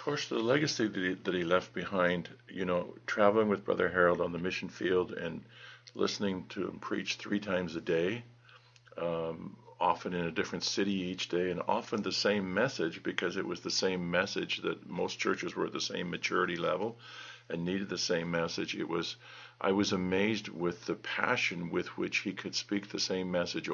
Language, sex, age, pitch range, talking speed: English, male, 50-69, 90-110 Hz, 190 wpm